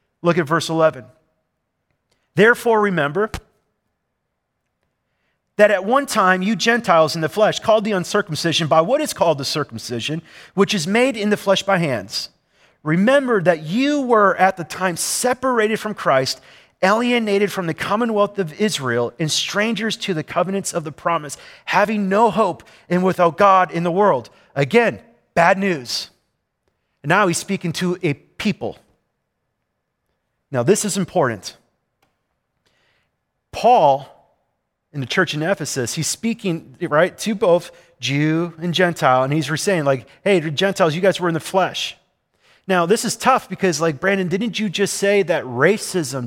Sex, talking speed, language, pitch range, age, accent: male, 155 wpm, English, 155-205 Hz, 40-59, American